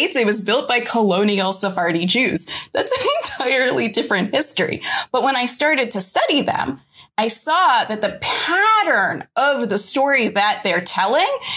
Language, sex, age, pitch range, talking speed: English, female, 20-39, 200-265 Hz, 155 wpm